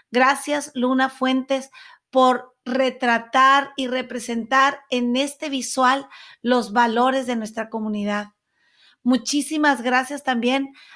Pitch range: 240-280 Hz